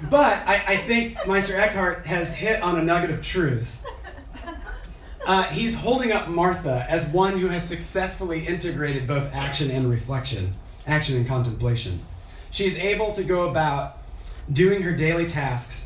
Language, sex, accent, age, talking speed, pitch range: English, male, American, 30-49, 150 wpm, 120-175 Hz